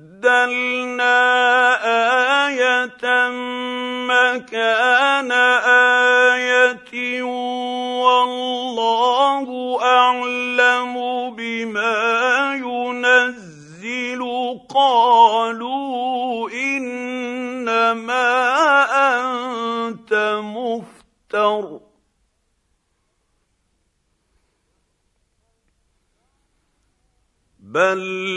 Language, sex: Arabic, male